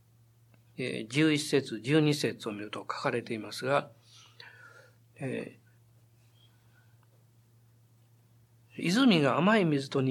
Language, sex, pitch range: Japanese, male, 115-180 Hz